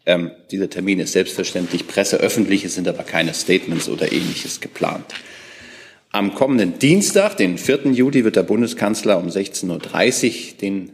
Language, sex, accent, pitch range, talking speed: German, male, German, 95-115 Hz, 150 wpm